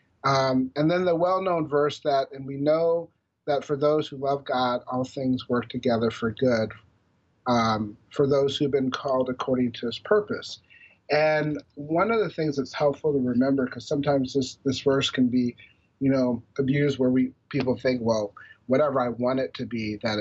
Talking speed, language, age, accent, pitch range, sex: 185 wpm, English, 40-59, American, 125-150 Hz, male